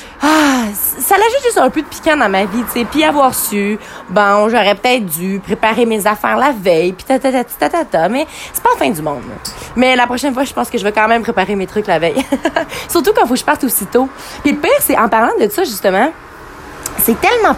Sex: female